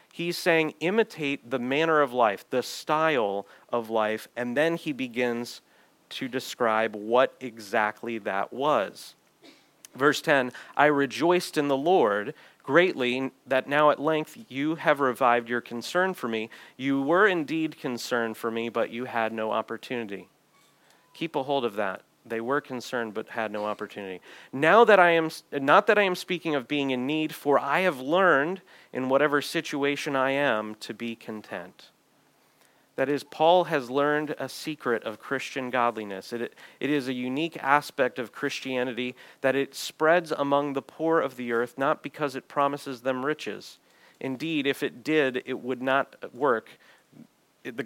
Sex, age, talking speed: male, 30-49, 165 wpm